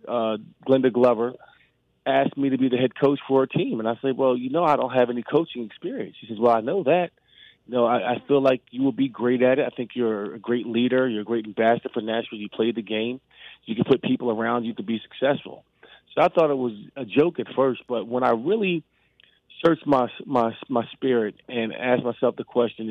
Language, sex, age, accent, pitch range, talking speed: English, male, 30-49, American, 115-135 Hz, 240 wpm